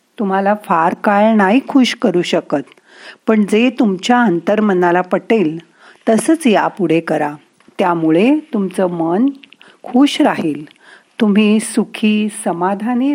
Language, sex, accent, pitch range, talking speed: Marathi, female, native, 175-245 Hz, 110 wpm